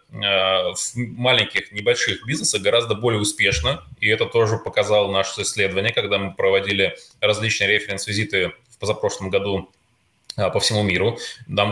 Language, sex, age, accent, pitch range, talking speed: Russian, male, 20-39, native, 100-145 Hz, 130 wpm